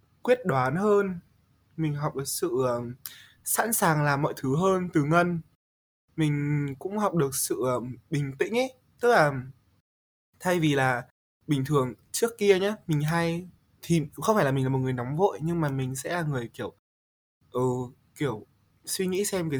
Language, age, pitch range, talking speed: Vietnamese, 20-39, 125-170 Hz, 180 wpm